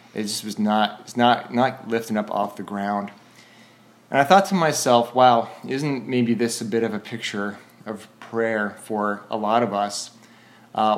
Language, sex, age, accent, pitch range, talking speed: English, male, 20-39, American, 105-120 Hz, 185 wpm